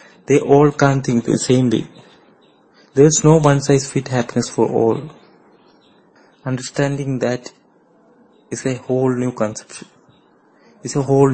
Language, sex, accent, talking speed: Malayalam, male, native, 125 wpm